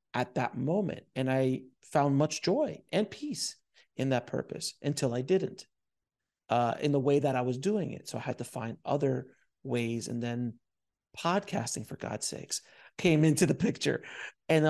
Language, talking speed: English, 175 wpm